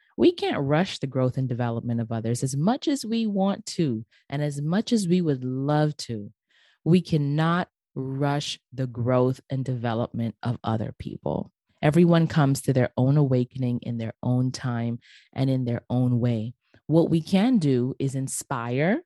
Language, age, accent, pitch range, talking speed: English, 20-39, American, 130-170 Hz, 170 wpm